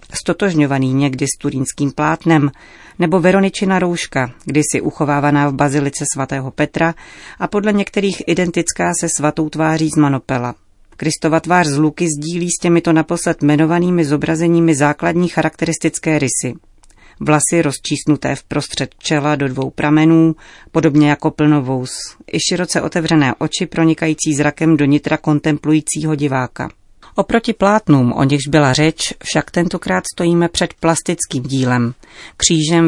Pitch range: 145-165 Hz